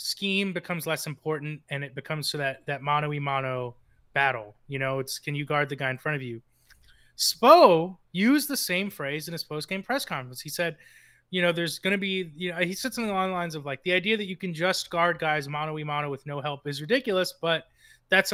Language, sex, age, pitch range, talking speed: English, male, 30-49, 150-190 Hz, 225 wpm